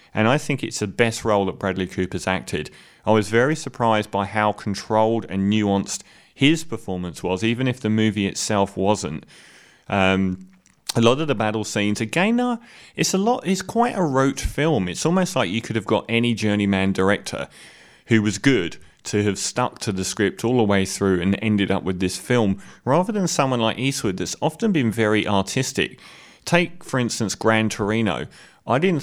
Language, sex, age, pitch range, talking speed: English, male, 30-49, 100-125 Hz, 190 wpm